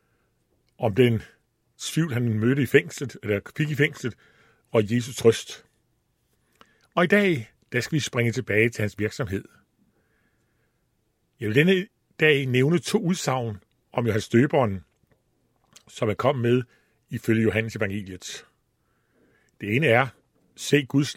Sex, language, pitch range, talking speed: male, Danish, 110-145 Hz, 135 wpm